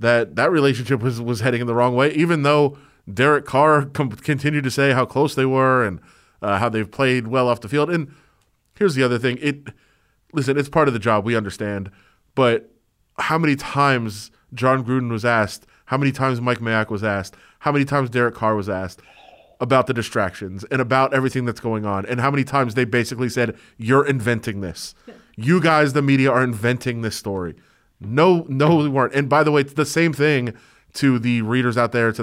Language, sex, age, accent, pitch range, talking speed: English, male, 30-49, American, 115-140 Hz, 210 wpm